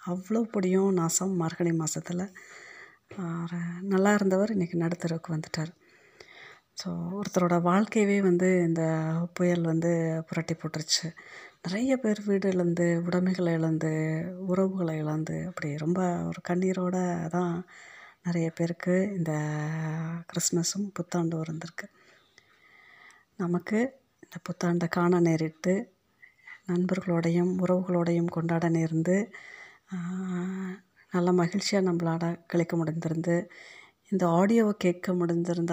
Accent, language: native, Tamil